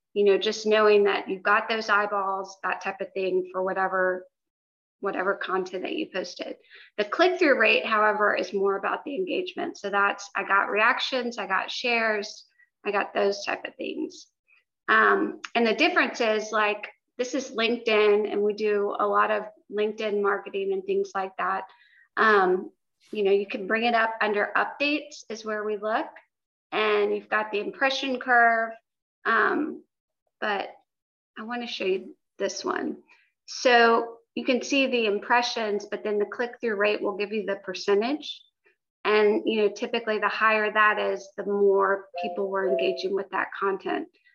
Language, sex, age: English, female, 30-49